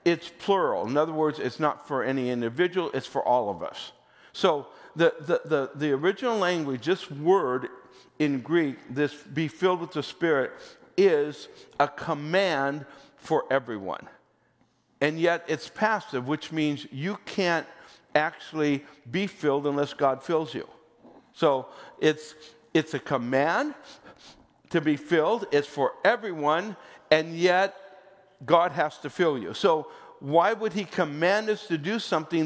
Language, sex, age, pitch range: English, male, 60-79, 145-190 Hz